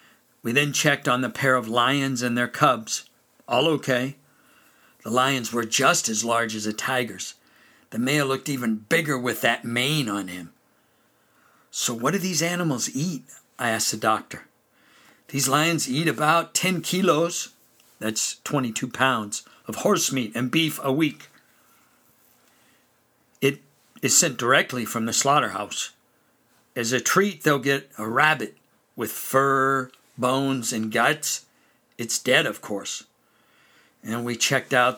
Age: 60-79